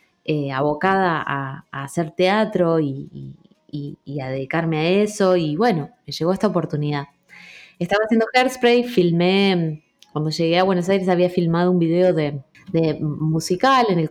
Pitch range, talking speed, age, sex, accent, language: 155-205 Hz, 155 wpm, 20-39, female, Argentinian, Spanish